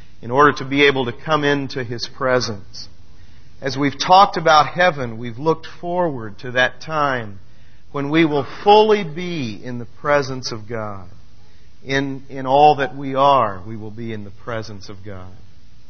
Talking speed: 170 wpm